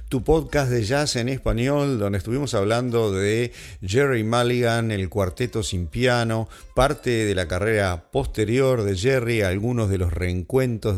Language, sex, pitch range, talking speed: English, male, 100-135 Hz, 150 wpm